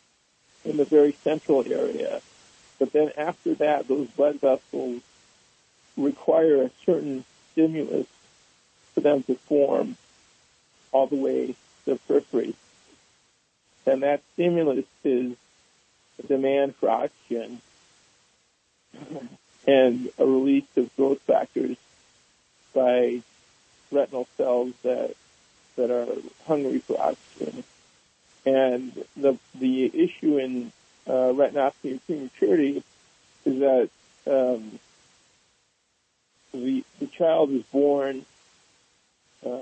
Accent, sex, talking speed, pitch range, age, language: American, male, 100 wpm, 130-145 Hz, 50-69, English